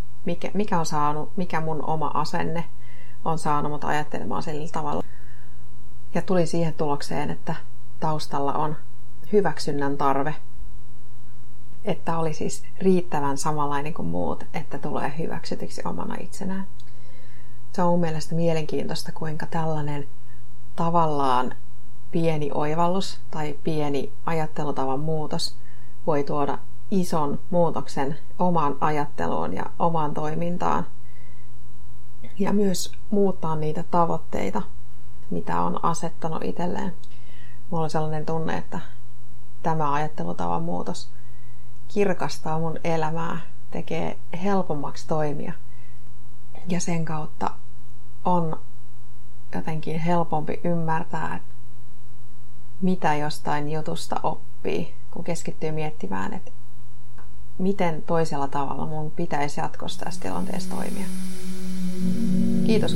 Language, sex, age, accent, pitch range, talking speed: Finnish, female, 30-49, native, 120-170 Hz, 100 wpm